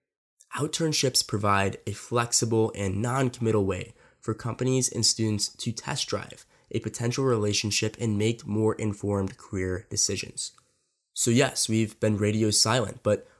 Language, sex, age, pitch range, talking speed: English, male, 10-29, 105-125 Hz, 135 wpm